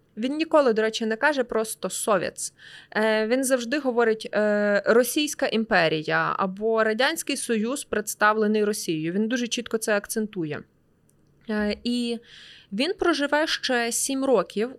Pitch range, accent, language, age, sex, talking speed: 220-275 Hz, native, Ukrainian, 20-39, female, 120 wpm